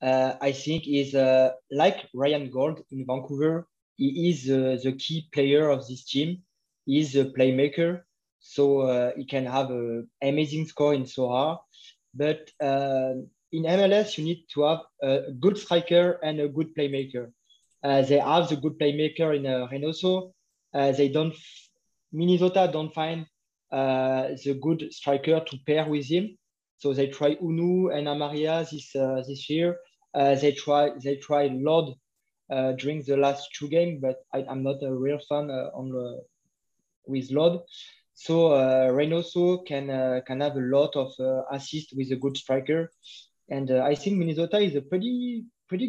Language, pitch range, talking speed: English, 135-170 Hz, 170 wpm